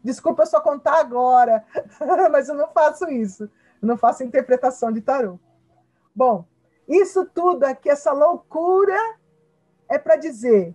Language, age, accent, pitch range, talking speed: Portuguese, 50-69, Brazilian, 215-300 Hz, 140 wpm